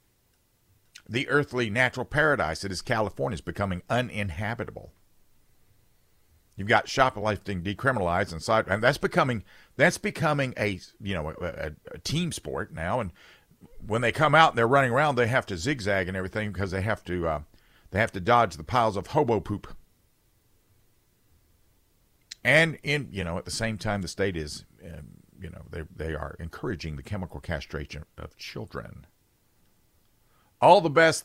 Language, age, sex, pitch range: English, 50-69, male, 90-120 Hz